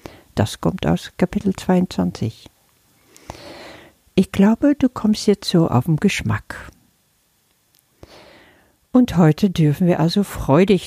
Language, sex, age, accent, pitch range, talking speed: German, female, 50-69, German, 145-185 Hz, 110 wpm